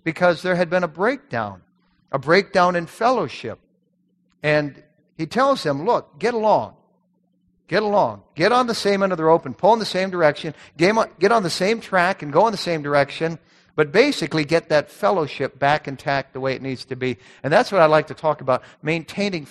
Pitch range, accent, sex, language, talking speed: 135-165 Hz, American, male, English, 205 wpm